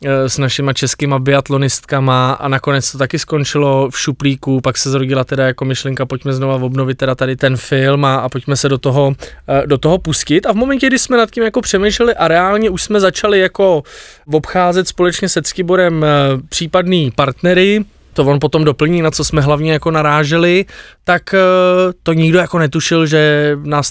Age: 20-39